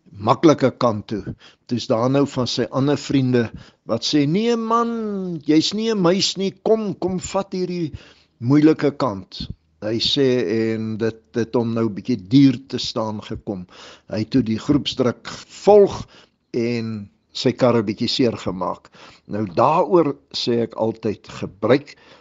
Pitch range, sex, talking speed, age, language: 110-150 Hz, male, 155 wpm, 60-79, English